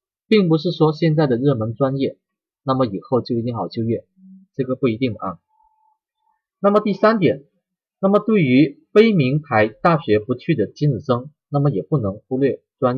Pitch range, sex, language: 125-205 Hz, male, Chinese